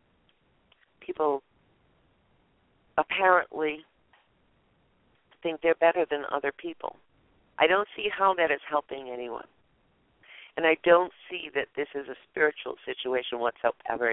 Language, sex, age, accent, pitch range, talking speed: English, female, 50-69, American, 135-175 Hz, 115 wpm